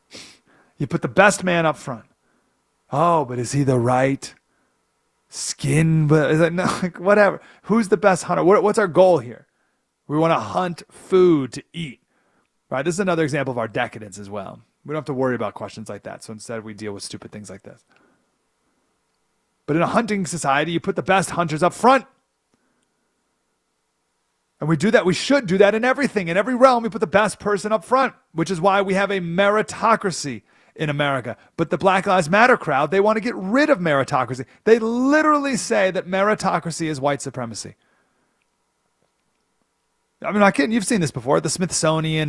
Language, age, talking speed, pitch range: English, 30-49, 190 wpm, 130-200 Hz